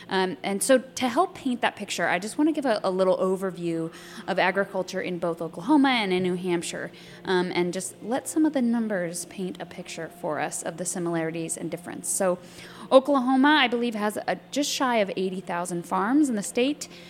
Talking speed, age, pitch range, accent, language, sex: 200 wpm, 20-39, 175-225 Hz, American, English, female